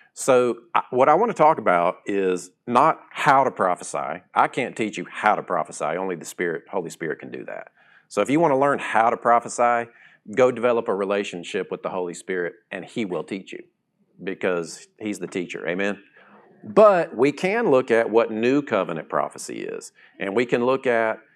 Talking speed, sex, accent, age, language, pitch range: 195 wpm, male, American, 40-59, English, 100-130 Hz